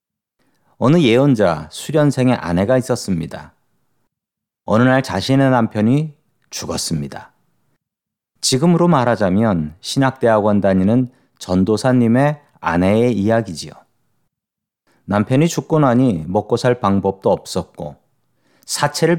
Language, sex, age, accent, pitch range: Korean, male, 40-59, native, 100-130 Hz